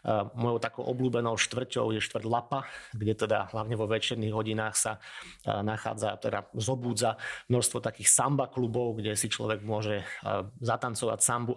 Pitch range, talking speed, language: 110-125 Hz, 140 wpm, Slovak